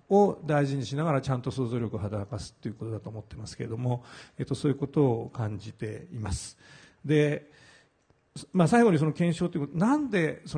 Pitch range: 125-165 Hz